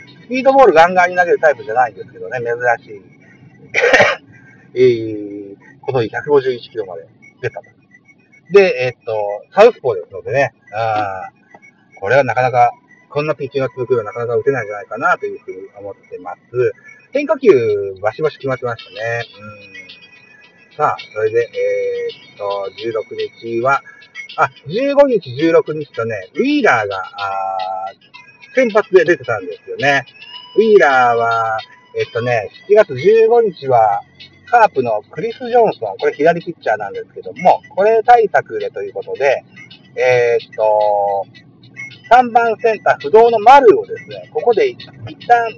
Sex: male